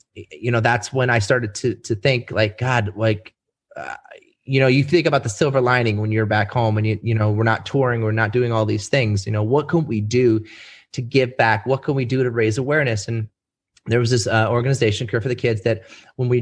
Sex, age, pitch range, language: male, 30-49, 110-125 Hz, English